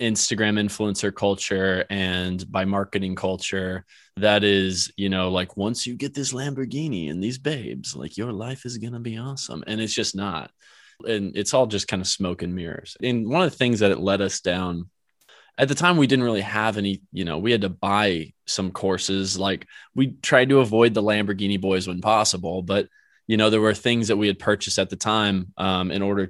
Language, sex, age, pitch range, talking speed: English, male, 20-39, 95-115 Hz, 210 wpm